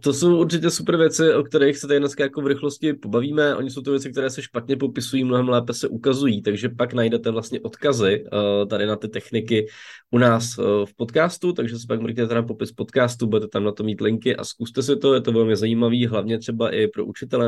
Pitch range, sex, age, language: 110-130 Hz, male, 20-39, Czech